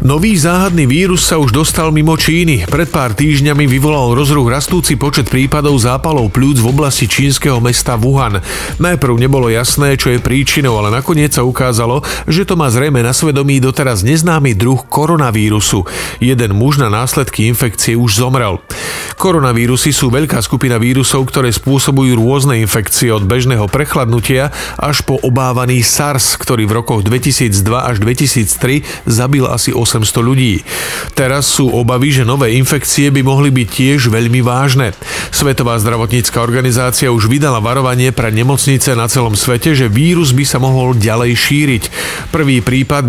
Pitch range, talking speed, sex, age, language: 120-145 Hz, 150 wpm, male, 40-59, Slovak